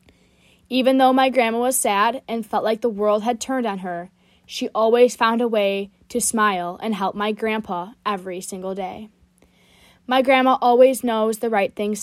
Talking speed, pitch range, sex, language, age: 180 wpm, 190-235 Hz, female, English, 10-29